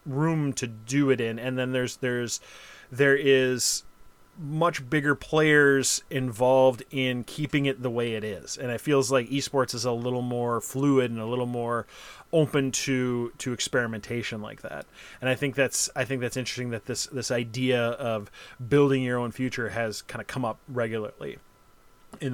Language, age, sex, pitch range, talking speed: English, 30-49, male, 120-145 Hz, 175 wpm